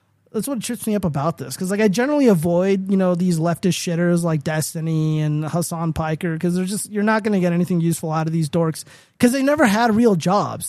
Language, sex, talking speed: English, male, 235 wpm